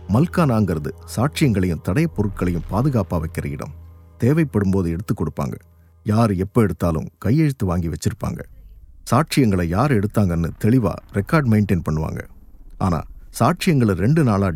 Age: 50-69